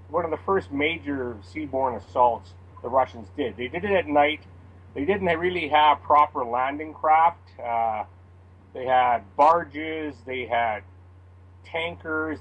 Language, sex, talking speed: English, male, 140 wpm